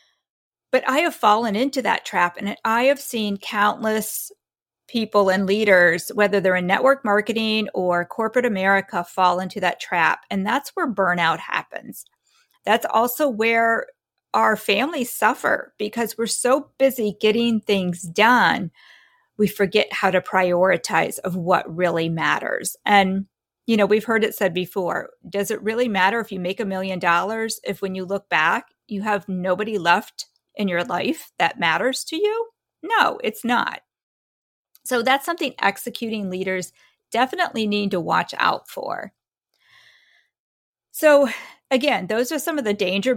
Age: 40-59